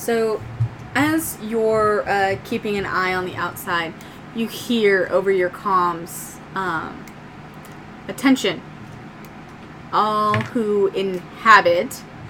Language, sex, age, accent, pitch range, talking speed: English, female, 20-39, American, 190-230 Hz, 100 wpm